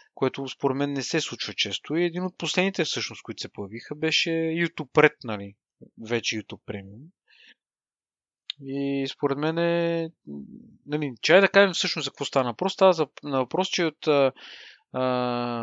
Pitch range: 125-170 Hz